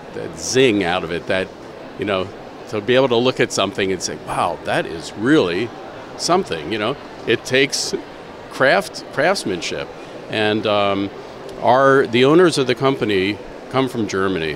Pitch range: 100-130 Hz